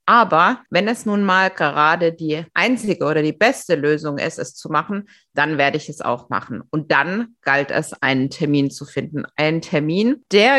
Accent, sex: German, female